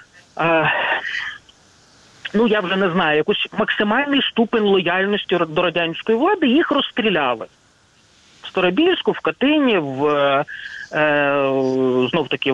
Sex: male